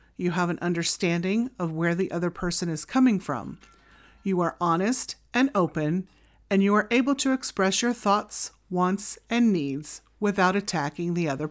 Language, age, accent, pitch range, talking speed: English, 40-59, American, 175-220 Hz, 165 wpm